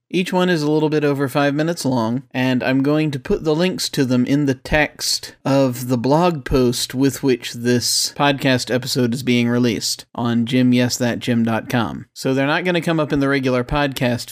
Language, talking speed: English, 195 wpm